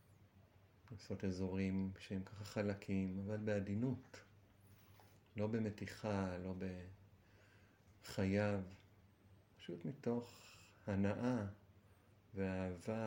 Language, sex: Hebrew, male